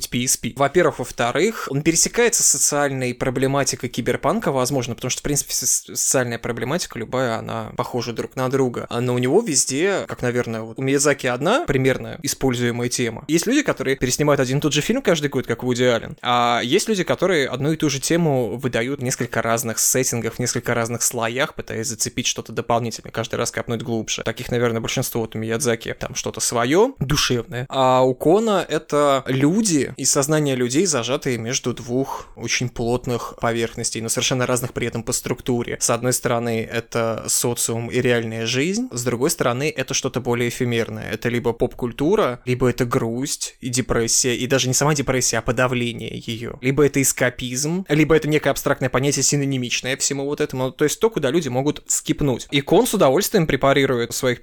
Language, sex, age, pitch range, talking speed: Russian, male, 20-39, 120-140 Hz, 180 wpm